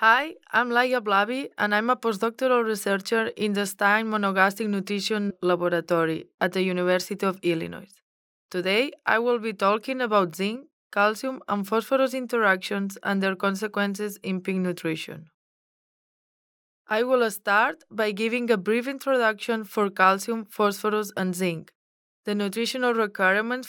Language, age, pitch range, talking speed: English, 20-39, 195-230 Hz, 135 wpm